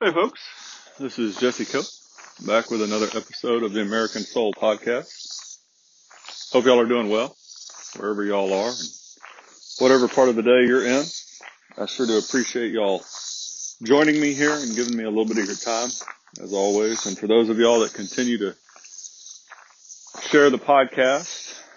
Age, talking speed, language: 40-59, 165 wpm, English